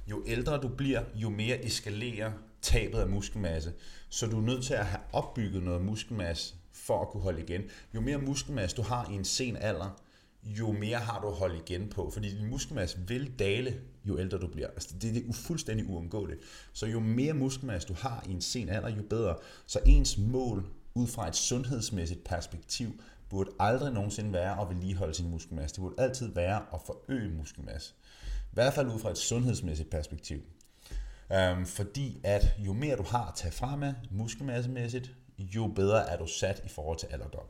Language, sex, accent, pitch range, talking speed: Danish, male, native, 90-120 Hz, 190 wpm